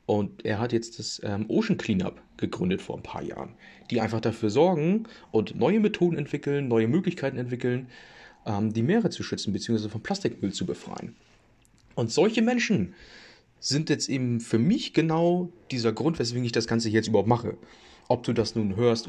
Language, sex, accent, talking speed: German, male, German, 175 wpm